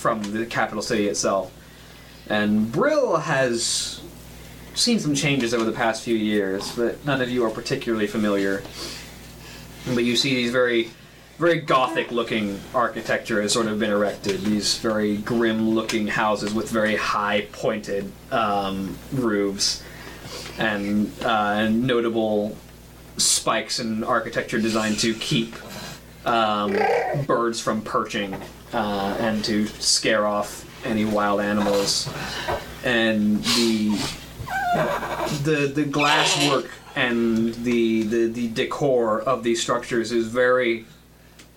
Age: 20-39